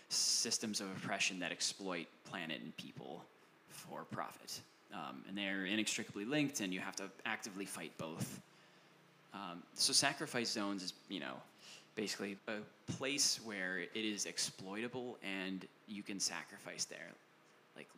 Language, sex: English, male